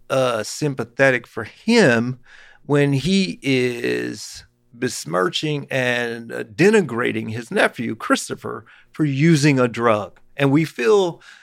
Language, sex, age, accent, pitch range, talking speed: English, male, 40-59, American, 115-155 Hz, 110 wpm